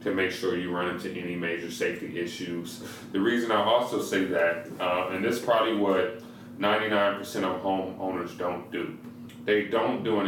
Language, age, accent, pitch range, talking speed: English, 30-49, American, 90-105 Hz, 195 wpm